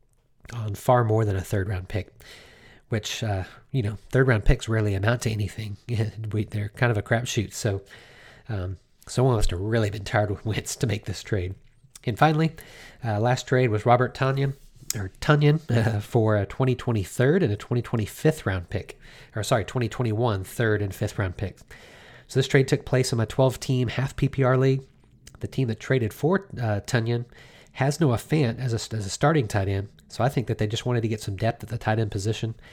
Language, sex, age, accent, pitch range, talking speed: English, male, 40-59, American, 105-130 Hz, 205 wpm